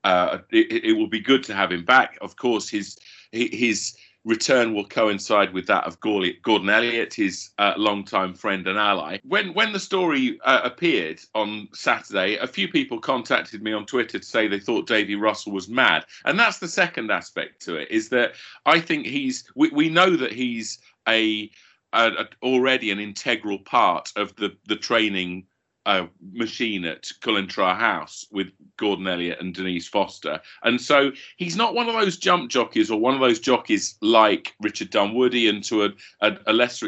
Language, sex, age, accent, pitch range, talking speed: English, male, 40-59, British, 100-140 Hz, 185 wpm